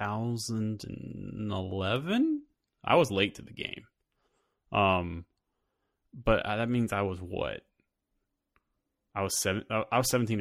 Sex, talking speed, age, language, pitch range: male, 120 wpm, 20-39, English, 100-130 Hz